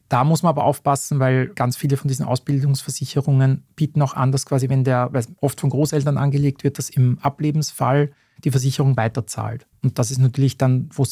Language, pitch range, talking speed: German, 130-150 Hz, 195 wpm